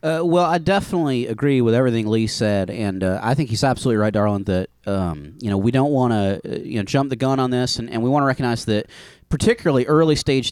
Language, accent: English, American